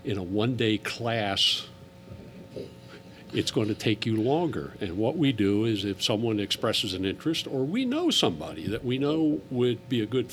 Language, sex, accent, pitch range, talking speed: English, male, American, 105-135 Hz, 180 wpm